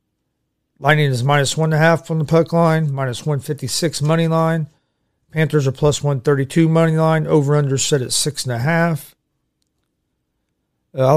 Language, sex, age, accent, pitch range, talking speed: English, male, 40-59, American, 135-160 Hz, 130 wpm